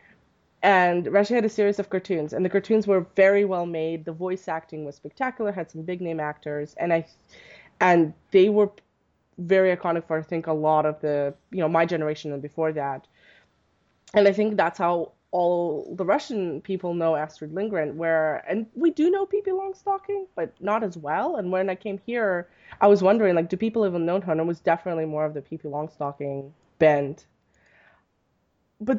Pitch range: 155-200 Hz